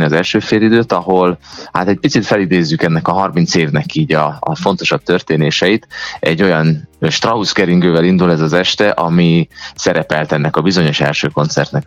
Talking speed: 155 wpm